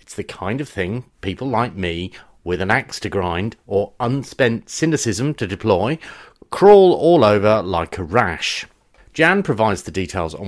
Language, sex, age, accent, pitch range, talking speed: English, male, 40-59, British, 90-115 Hz, 160 wpm